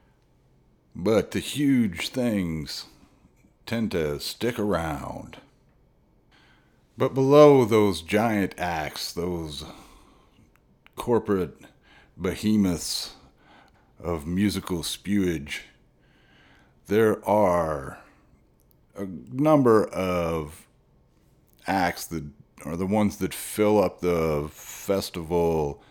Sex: male